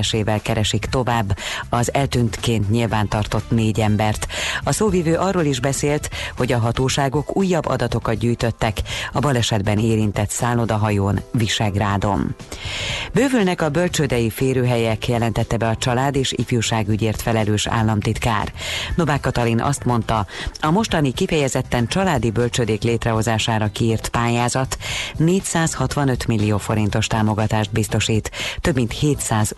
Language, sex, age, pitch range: Hungarian, female, 30-49, 110-135 Hz